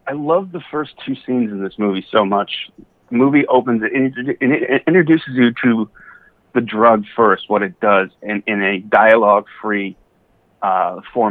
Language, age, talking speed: English, 30-49, 165 wpm